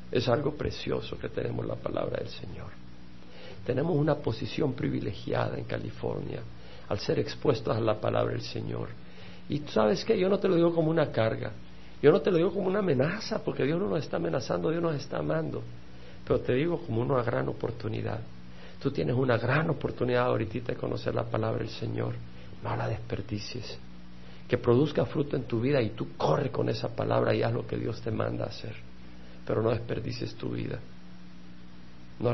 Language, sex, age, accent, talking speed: Spanish, male, 50-69, Mexican, 185 wpm